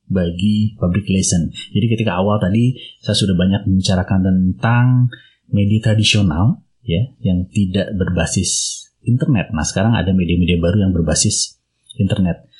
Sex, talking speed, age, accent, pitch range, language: male, 130 wpm, 30-49, native, 90-115 Hz, Indonesian